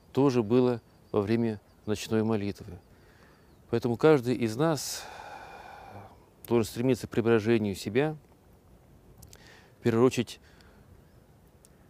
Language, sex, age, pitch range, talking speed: Russian, male, 40-59, 100-125 Hz, 80 wpm